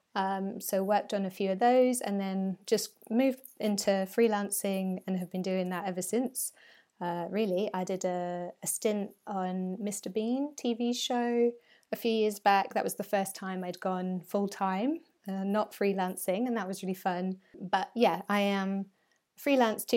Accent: British